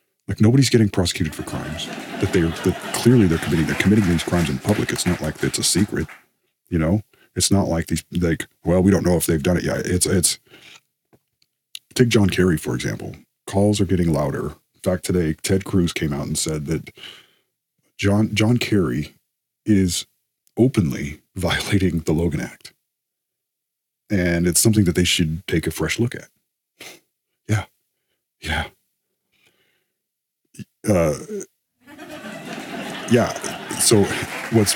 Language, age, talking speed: English, 40-59, 155 wpm